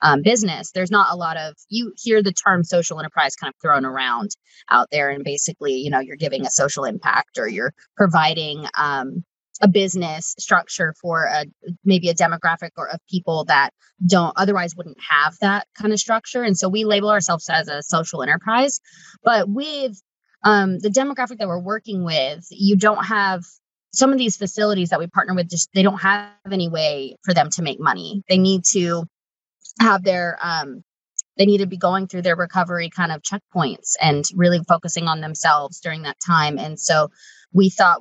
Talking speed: 190 wpm